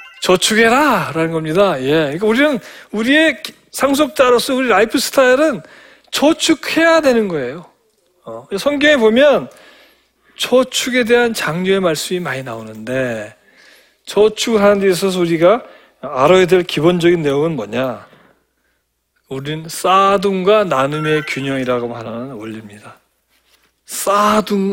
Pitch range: 150-215 Hz